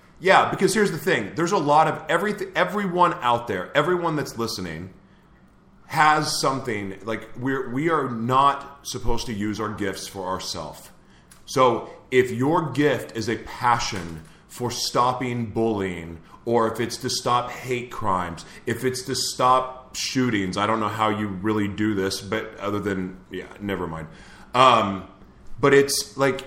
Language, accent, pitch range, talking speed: English, American, 100-130 Hz, 160 wpm